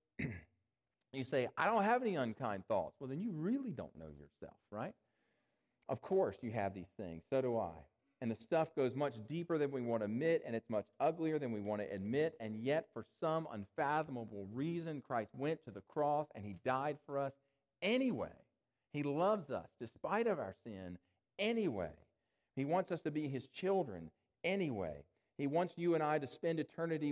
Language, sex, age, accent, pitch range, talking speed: English, male, 40-59, American, 110-150 Hz, 190 wpm